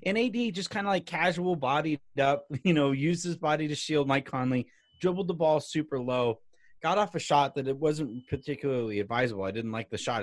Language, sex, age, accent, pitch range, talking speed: English, male, 30-49, American, 145-205 Hz, 210 wpm